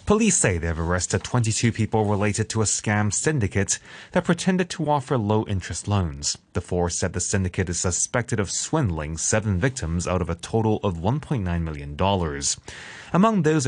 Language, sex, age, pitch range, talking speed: English, male, 20-39, 100-145 Hz, 165 wpm